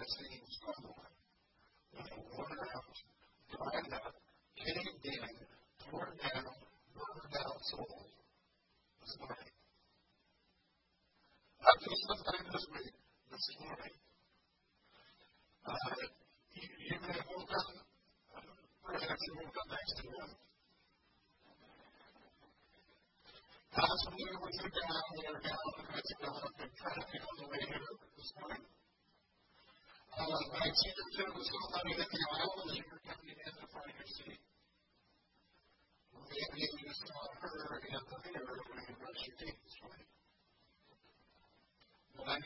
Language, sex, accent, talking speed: English, female, American, 95 wpm